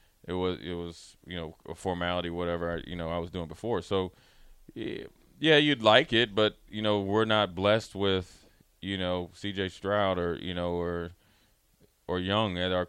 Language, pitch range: English, 90-100 Hz